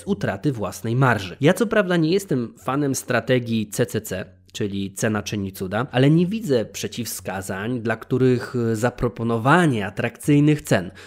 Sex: male